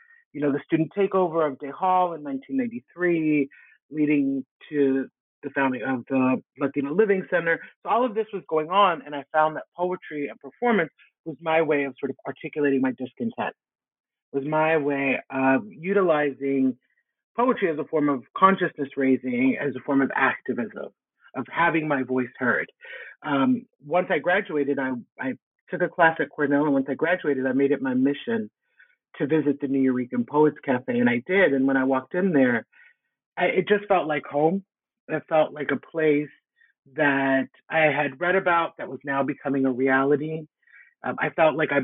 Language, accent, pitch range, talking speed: English, American, 135-180 Hz, 185 wpm